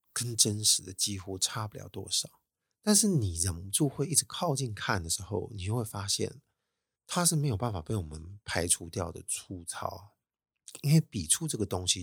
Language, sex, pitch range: Chinese, male, 95-120 Hz